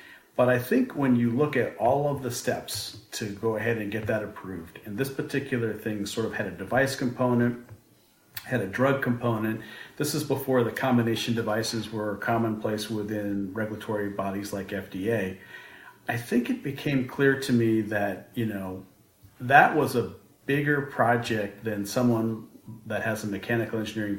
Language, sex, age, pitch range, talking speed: English, male, 40-59, 105-125 Hz, 165 wpm